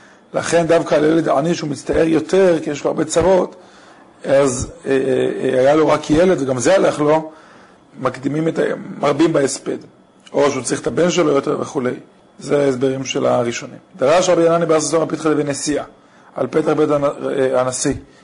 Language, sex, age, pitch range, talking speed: Hebrew, male, 40-59, 140-165 Hz, 165 wpm